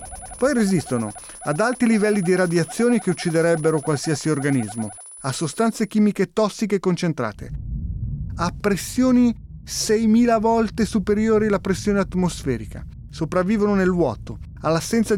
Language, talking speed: Italian, 110 wpm